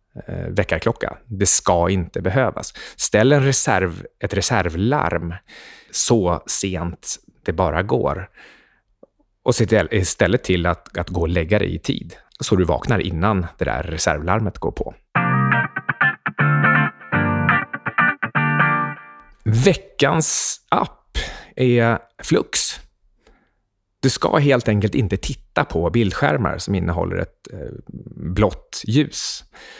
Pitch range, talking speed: 90-115 Hz, 105 wpm